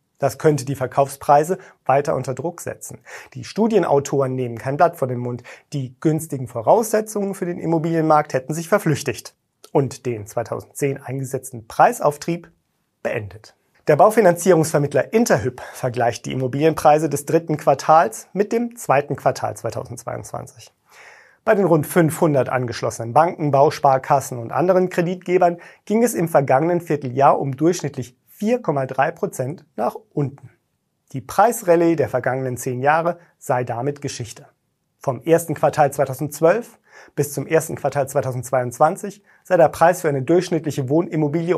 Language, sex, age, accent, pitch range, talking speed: German, male, 30-49, German, 130-170 Hz, 135 wpm